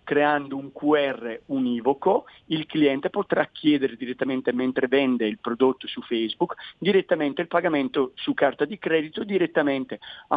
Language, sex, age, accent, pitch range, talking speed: Italian, male, 40-59, native, 125-155 Hz, 140 wpm